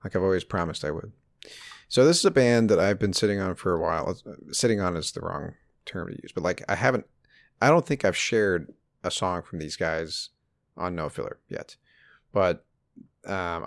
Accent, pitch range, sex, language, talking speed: American, 85-110 Hz, male, English, 205 wpm